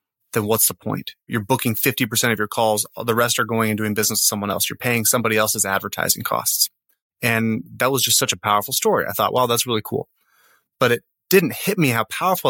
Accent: American